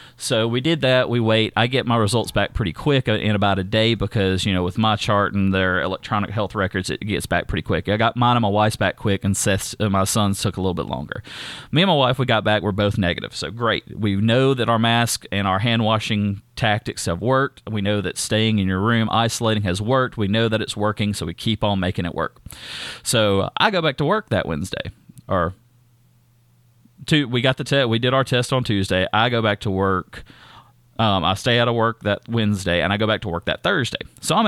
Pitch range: 100-120 Hz